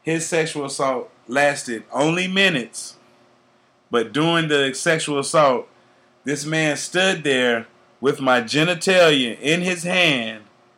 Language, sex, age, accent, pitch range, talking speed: English, male, 30-49, American, 125-155 Hz, 115 wpm